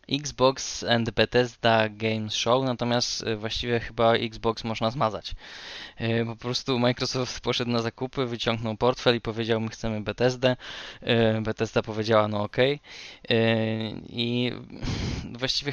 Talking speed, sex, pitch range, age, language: 115 wpm, male, 110-125 Hz, 20-39, Polish